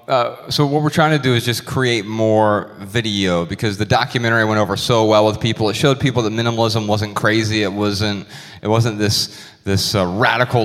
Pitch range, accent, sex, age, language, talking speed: 100-120 Hz, American, male, 30-49, English, 220 wpm